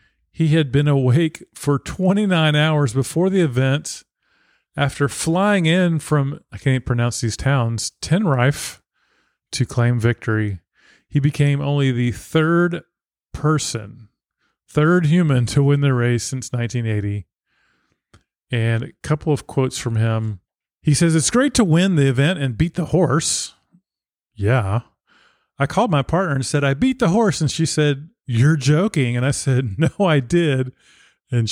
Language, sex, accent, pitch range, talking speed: English, male, American, 120-160 Hz, 150 wpm